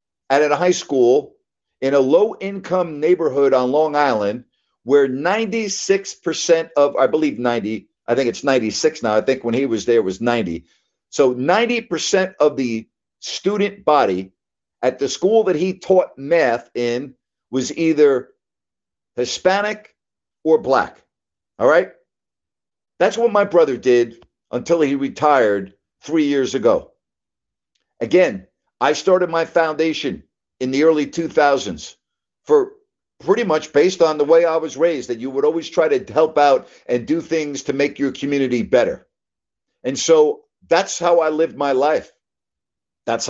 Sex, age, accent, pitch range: male, 50-69, American, 135-190 Hz